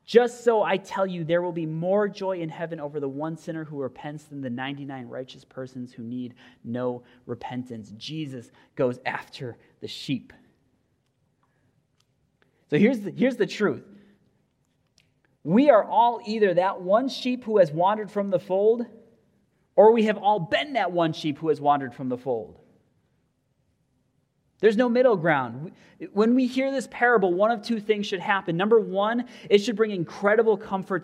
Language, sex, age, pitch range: English, male, 30-49, 130-200 Hz